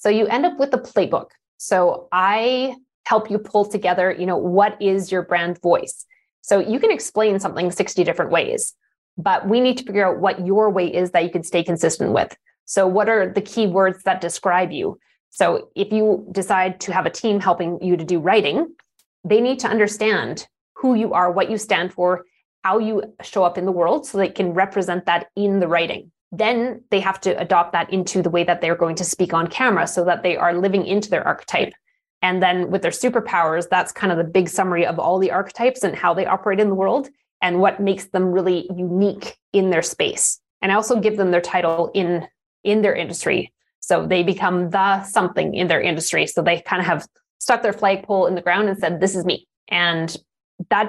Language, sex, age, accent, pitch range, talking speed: English, female, 20-39, American, 180-210 Hz, 215 wpm